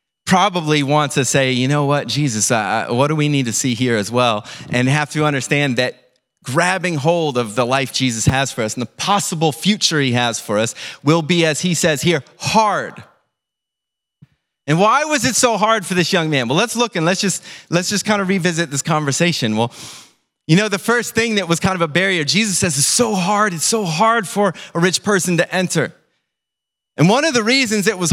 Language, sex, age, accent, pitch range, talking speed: English, male, 30-49, American, 150-210 Hz, 220 wpm